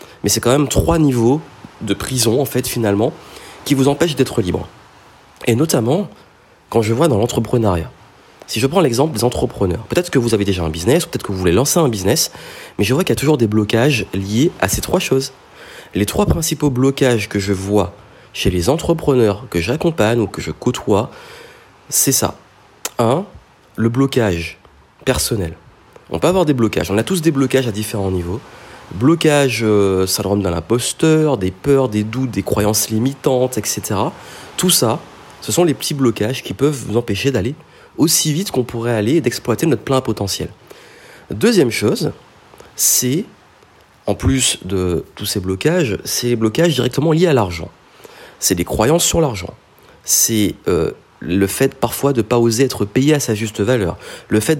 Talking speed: 185 wpm